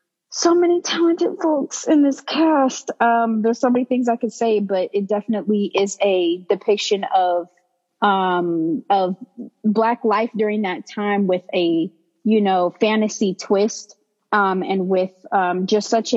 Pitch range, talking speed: 185-220 Hz, 150 wpm